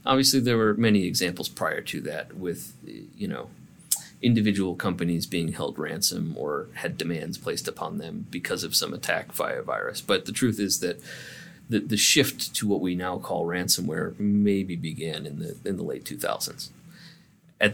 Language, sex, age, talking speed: English, male, 30-49, 175 wpm